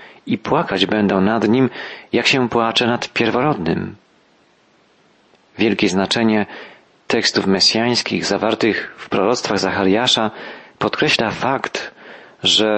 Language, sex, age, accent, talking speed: Polish, male, 40-59, native, 100 wpm